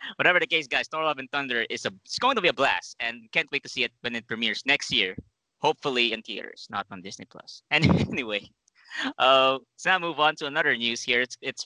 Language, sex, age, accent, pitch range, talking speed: English, male, 20-39, Filipino, 115-145 Hz, 235 wpm